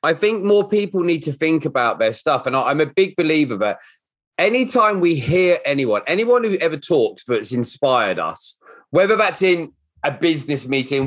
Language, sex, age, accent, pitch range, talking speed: English, male, 30-49, British, 145-210 Hz, 180 wpm